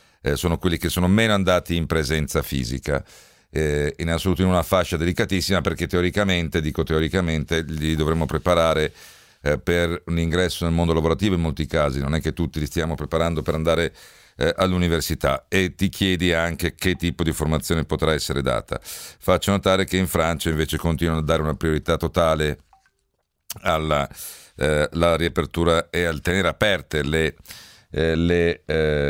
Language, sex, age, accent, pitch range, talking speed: Italian, male, 50-69, native, 80-90 Hz, 165 wpm